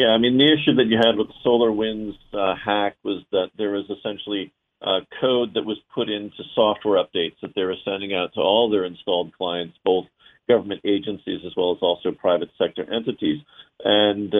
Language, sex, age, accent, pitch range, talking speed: English, male, 50-69, American, 95-110 Hz, 190 wpm